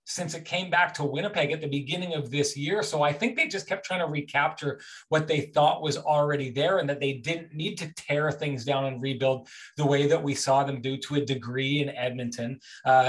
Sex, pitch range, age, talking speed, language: male, 135-165 Hz, 30-49, 235 wpm, English